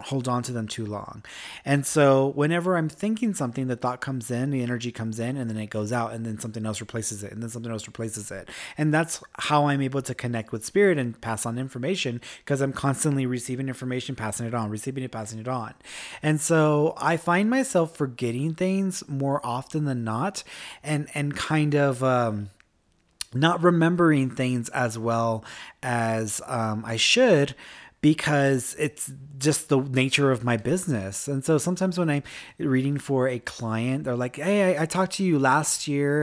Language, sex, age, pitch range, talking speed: English, male, 30-49, 120-155 Hz, 190 wpm